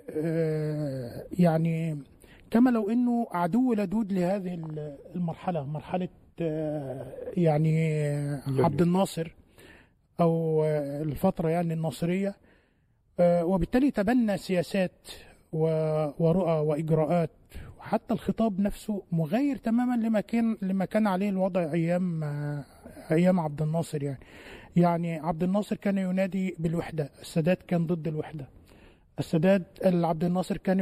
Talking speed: 100 wpm